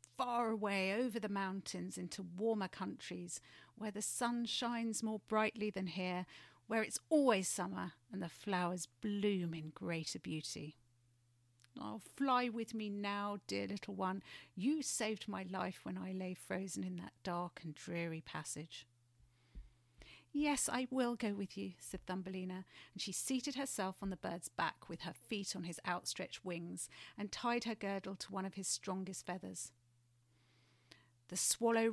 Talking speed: 160 wpm